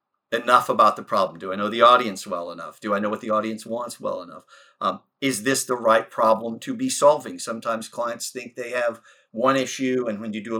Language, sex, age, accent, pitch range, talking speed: English, male, 50-69, American, 110-125 Hz, 230 wpm